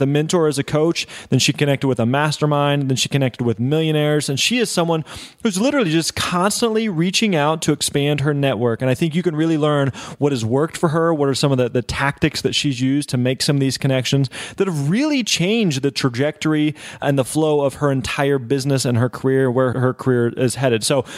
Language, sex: English, male